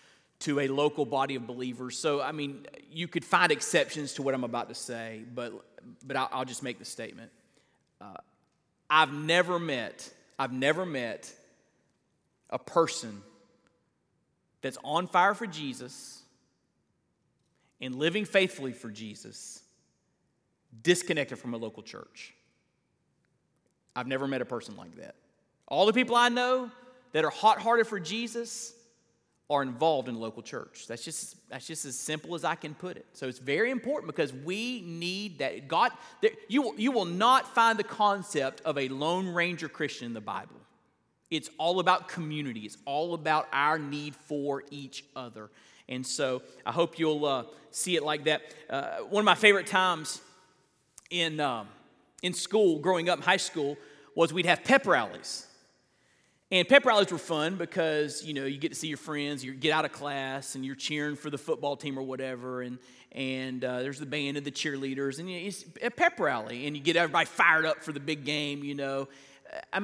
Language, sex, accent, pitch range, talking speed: English, male, American, 135-180 Hz, 180 wpm